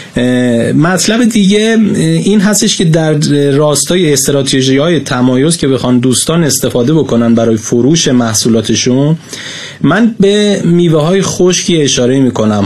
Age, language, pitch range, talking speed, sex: 30-49, Persian, 130-170 Hz, 115 wpm, male